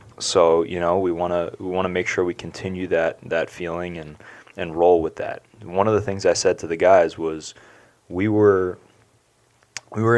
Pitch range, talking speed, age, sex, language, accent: 85-105 Hz, 205 wpm, 20-39, male, English, American